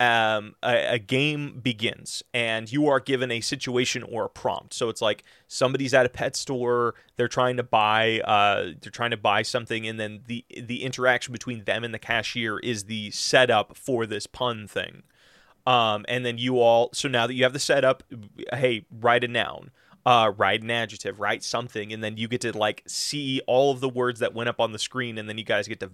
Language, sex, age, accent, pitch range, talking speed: English, male, 30-49, American, 115-135 Hz, 215 wpm